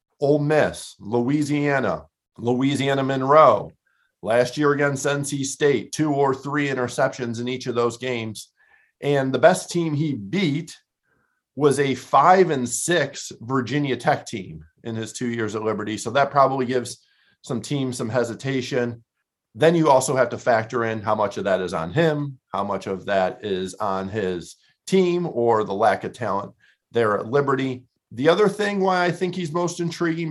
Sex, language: male, English